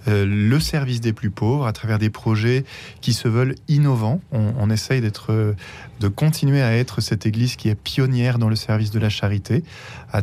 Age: 20-39